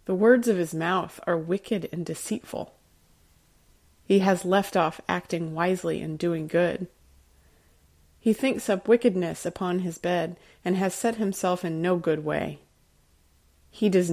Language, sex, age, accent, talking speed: English, female, 30-49, American, 150 wpm